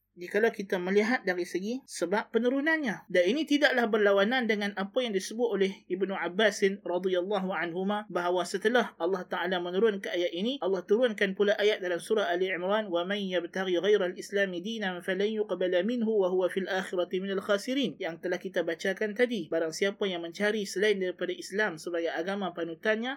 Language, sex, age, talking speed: Malay, male, 20-39, 165 wpm